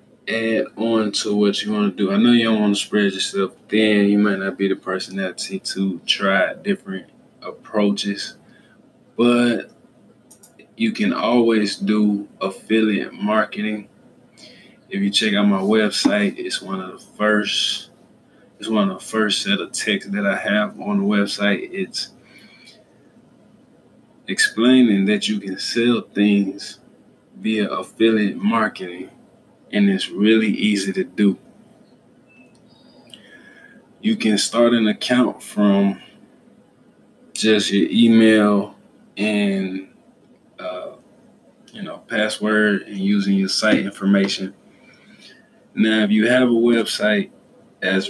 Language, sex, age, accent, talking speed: English, male, 20-39, American, 125 wpm